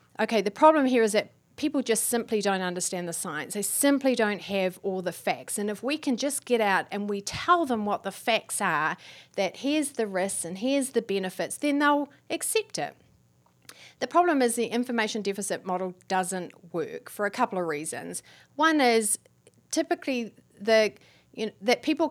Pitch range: 180-240 Hz